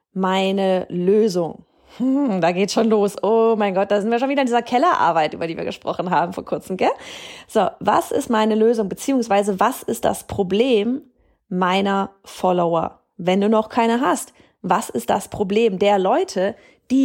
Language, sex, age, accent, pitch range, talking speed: German, female, 30-49, German, 195-255 Hz, 175 wpm